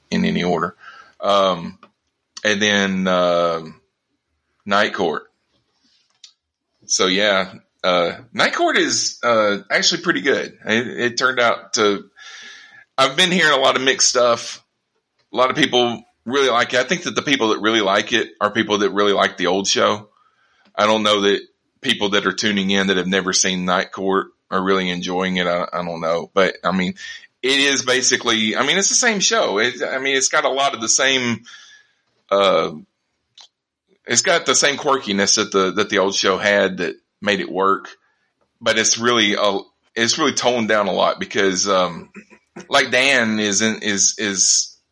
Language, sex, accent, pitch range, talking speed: English, male, American, 95-125 Hz, 180 wpm